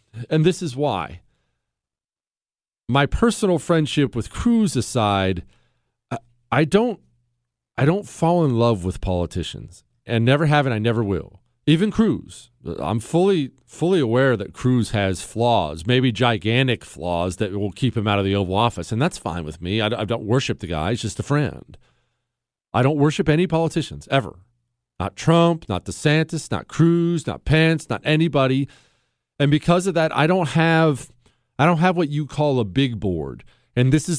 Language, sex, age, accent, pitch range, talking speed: English, male, 40-59, American, 105-145 Hz, 175 wpm